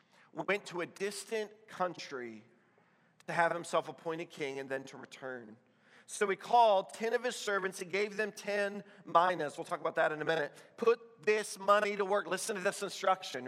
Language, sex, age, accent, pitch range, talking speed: English, male, 40-59, American, 160-200 Hz, 185 wpm